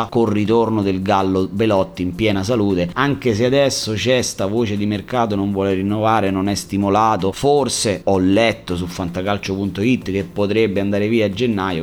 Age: 30-49